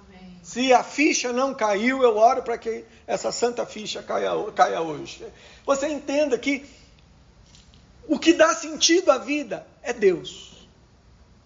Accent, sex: Brazilian, male